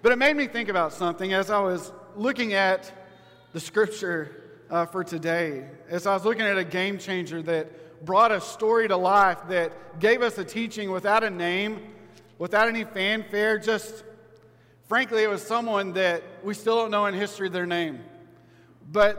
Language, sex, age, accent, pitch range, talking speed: English, male, 40-59, American, 170-220 Hz, 180 wpm